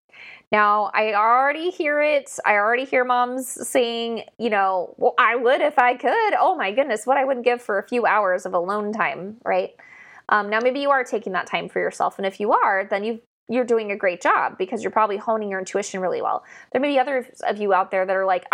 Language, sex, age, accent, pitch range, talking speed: English, female, 20-39, American, 215-265 Hz, 235 wpm